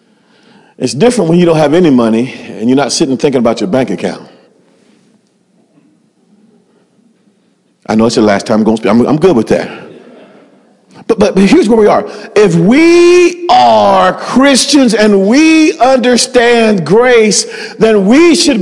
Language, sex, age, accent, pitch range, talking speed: English, male, 40-59, American, 160-240 Hz, 160 wpm